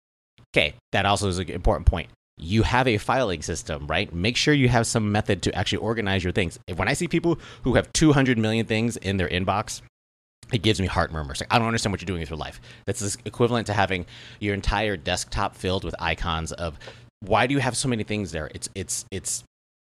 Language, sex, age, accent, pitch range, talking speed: English, male, 30-49, American, 90-110 Hz, 215 wpm